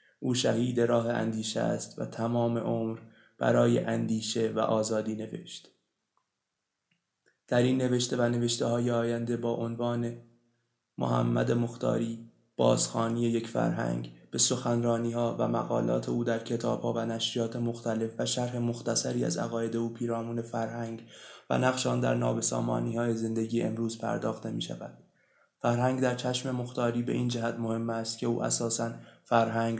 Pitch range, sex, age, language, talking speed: 110-120 Hz, male, 20-39, Persian, 140 wpm